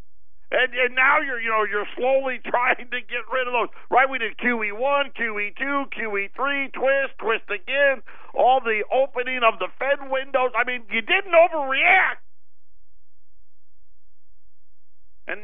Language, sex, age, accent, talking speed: English, male, 50-69, American, 140 wpm